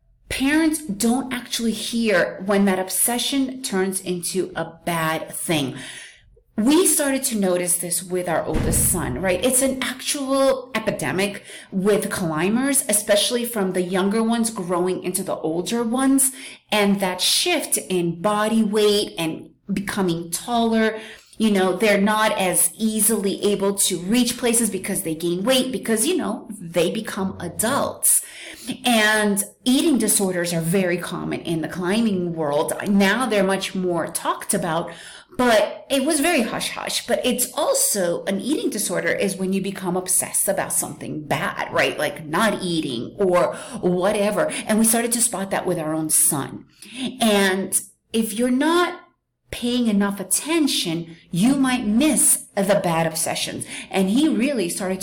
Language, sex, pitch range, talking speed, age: English, female, 185-245 Hz, 150 wpm, 30-49